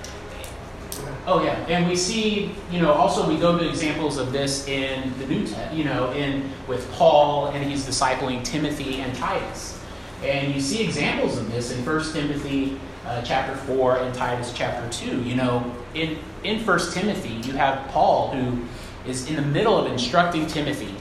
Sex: male